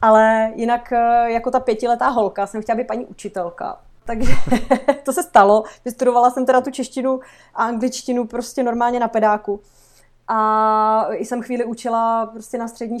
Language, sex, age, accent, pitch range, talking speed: Czech, female, 30-49, native, 215-245 Hz, 155 wpm